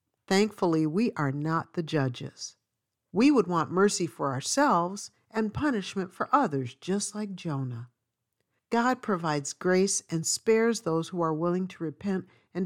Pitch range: 140-200 Hz